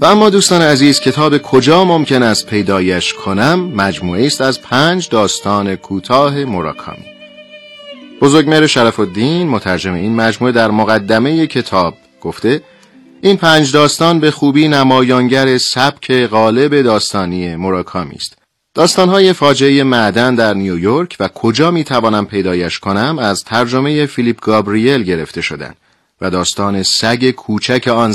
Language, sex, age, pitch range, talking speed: Persian, male, 40-59, 100-145 Hz, 130 wpm